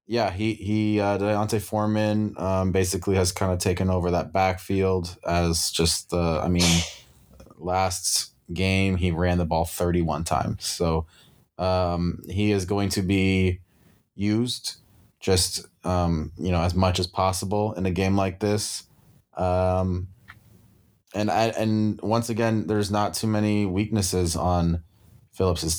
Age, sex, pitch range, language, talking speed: 20-39, male, 90-100 Hz, English, 145 wpm